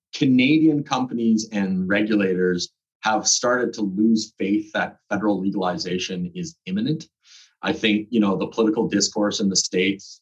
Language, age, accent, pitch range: English, 30-49, American, 95-115 Hz